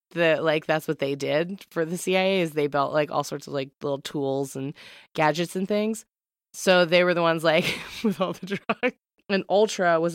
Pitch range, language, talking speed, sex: 145-180 Hz, English, 205 wpm, female